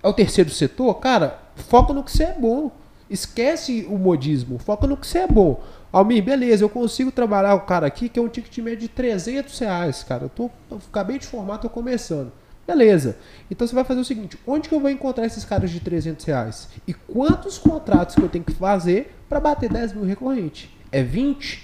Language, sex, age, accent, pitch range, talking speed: Portuguese, male, 20-39, Brazilian, 165-235 Hz, 215 wpm